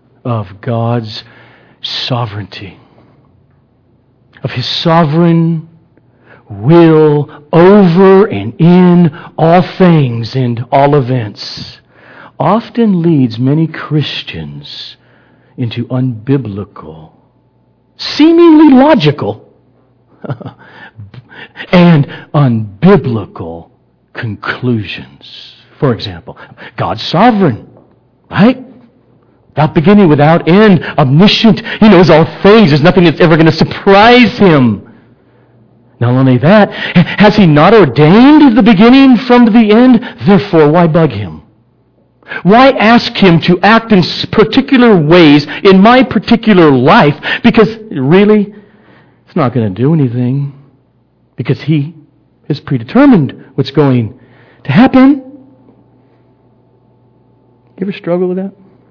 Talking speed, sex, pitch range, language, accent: 100 wpm, male, 125-195 Hz, English, American